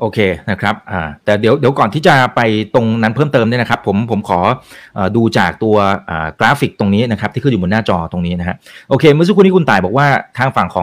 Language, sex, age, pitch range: Thai, male, 30-49, 105-145 Hz